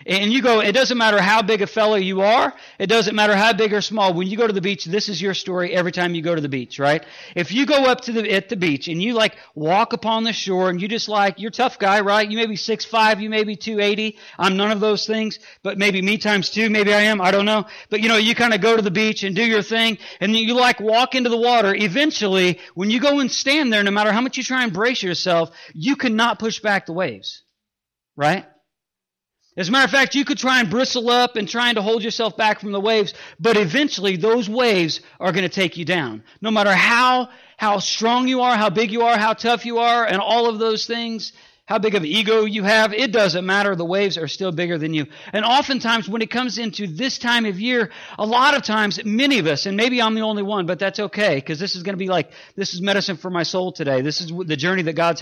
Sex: male